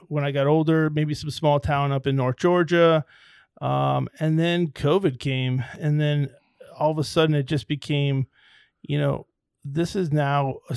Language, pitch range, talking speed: English, 135-150 Hz, 180 wpm